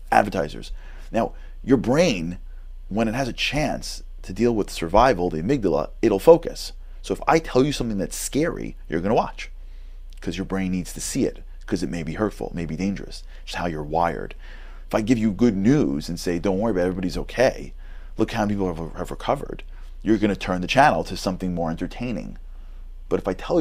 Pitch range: 65-95 Hz